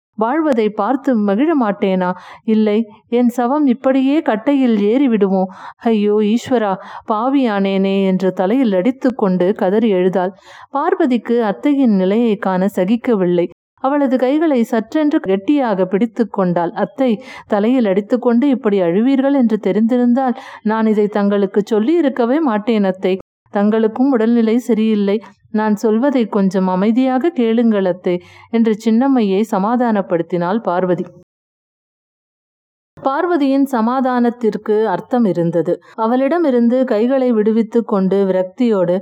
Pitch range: 195-245 Hz